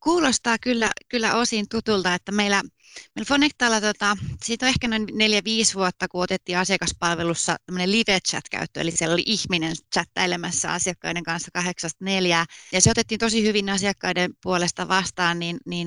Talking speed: 150 wpm